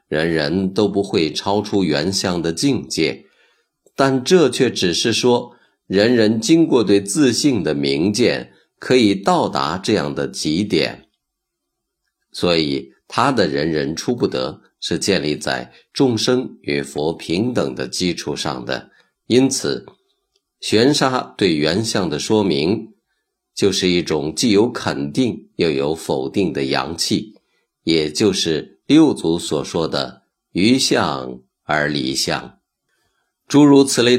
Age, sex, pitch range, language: 50-69, male, 80-120 Hz, Chinese